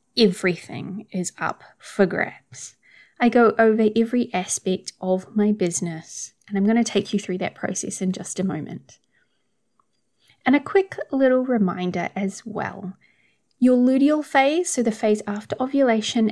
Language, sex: English, female